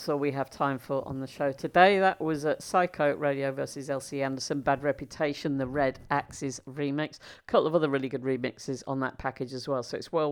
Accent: British